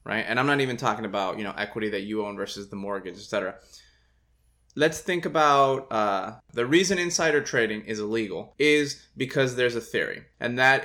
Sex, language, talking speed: male, English, 190 wpm